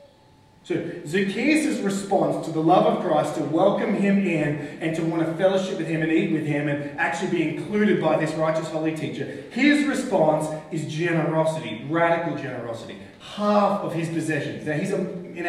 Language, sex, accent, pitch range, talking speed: English, male, Australian, 155-195 Hz, 175 wpm